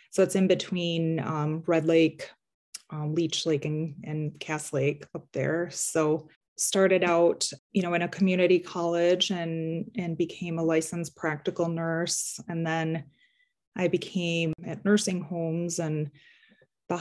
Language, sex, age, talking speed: English, female, 20-39, 145 wpm